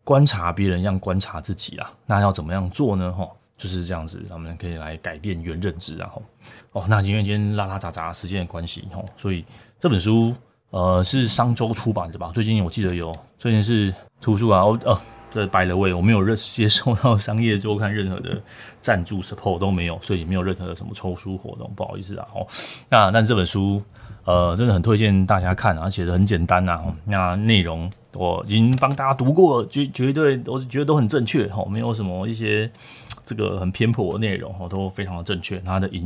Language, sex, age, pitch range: Chinese, male, 20-39, 90-115 Hz